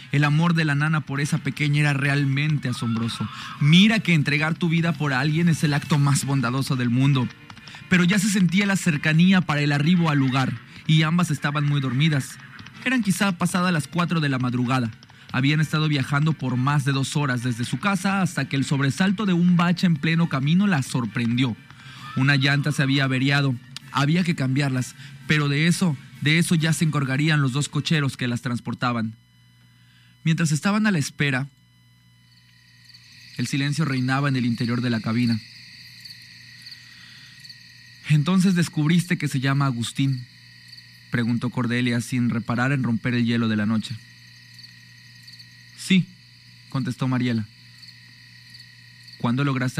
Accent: Mexican